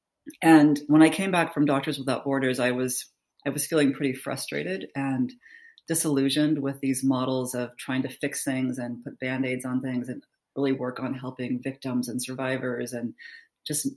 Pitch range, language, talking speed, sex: 125-145 Hz, English, 175 wpm, female